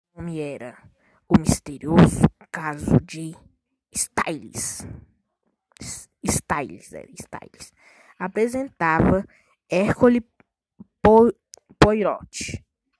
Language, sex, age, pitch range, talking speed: Portuguese, female, 20-39, 180-225 Hz, 55 wpm